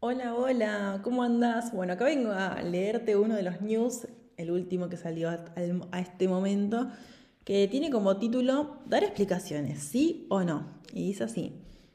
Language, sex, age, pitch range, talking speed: Spanish, female, 20-39, 175-230 Hz, 160 wpm